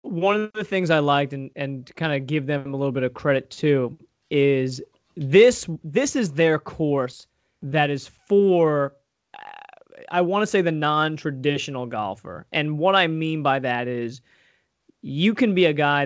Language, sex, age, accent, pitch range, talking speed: English, male, 20-39, American, 135-165 Hz, 170 wpm